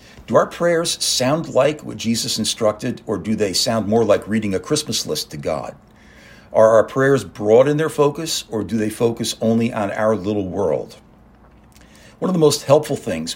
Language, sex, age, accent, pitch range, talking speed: English, male, 50-69, American, 100-130 Hz, 190 wpm